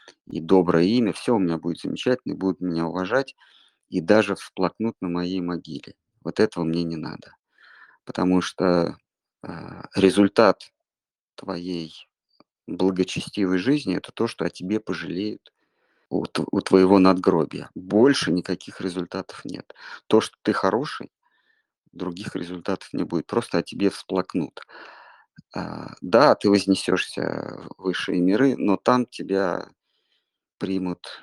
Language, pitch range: Russian, 85-95 Hz